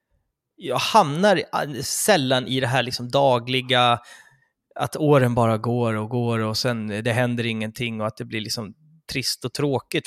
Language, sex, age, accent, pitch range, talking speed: Swedish, male, 20-39, native, 120-155 Hz, 150 wpm